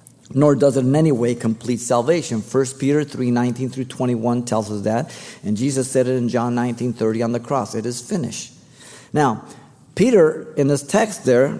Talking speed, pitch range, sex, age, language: 180 wpm, 120-155 Hz, male, 50-69, English